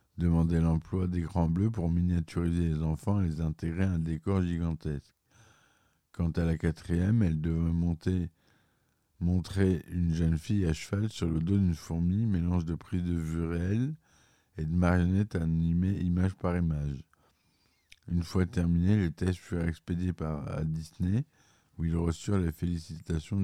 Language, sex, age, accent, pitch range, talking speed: French, male, 50-69, French, 80-95 Hz, 155 wpm